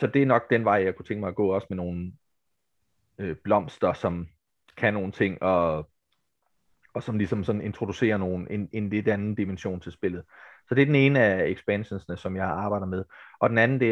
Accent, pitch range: native, 95-110 Hz